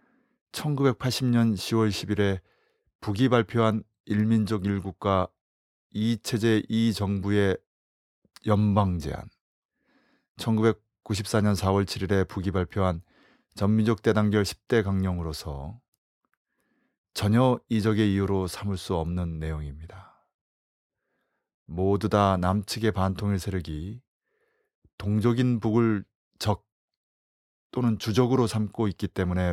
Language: Korean